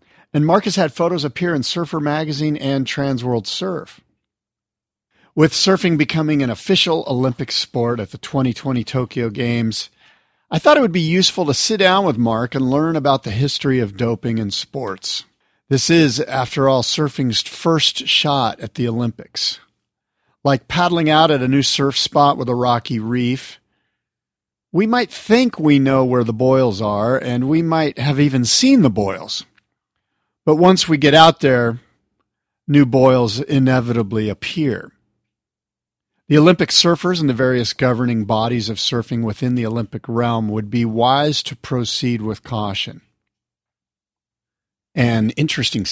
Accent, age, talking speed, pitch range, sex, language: American, 50-69, 150 wpm, 110-150 Hz, male, English